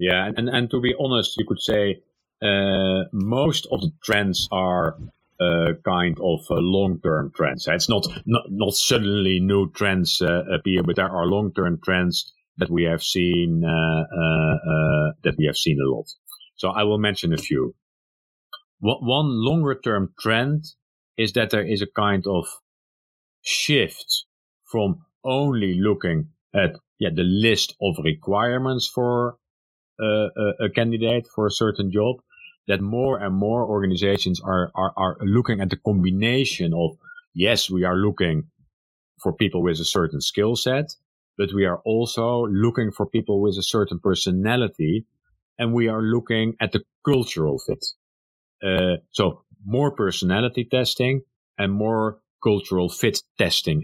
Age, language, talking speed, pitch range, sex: 50-69, English, 155 wpm, 90-115 Hz, male